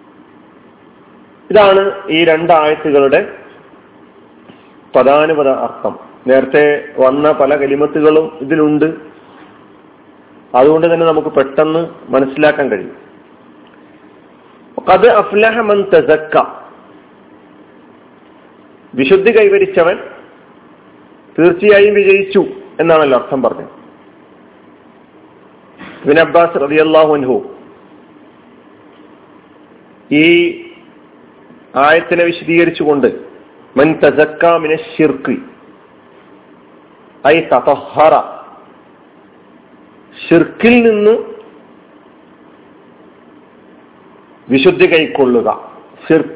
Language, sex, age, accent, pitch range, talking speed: Malayalam, male, 40-59, native, 155-195 Hz, 45 wpm